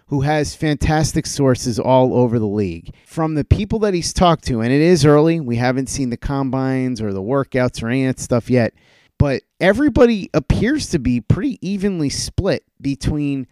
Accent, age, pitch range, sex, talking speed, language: American, 30-49, 120-150 Hz, male, 185 wpm, English